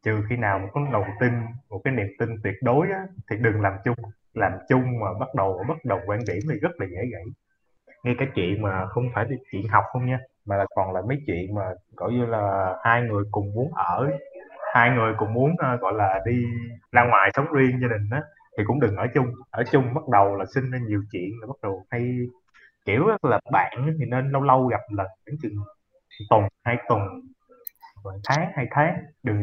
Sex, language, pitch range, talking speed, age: male, Vietnamese, 105-150 Hz, 220 wpm, 20-39